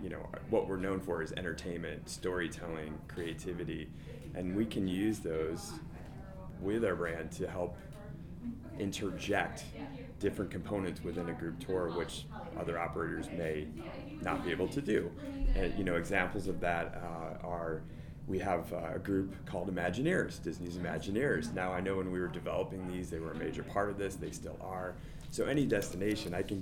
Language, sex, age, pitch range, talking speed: English, male, 30-49, 85-95 Hz, 170 wpm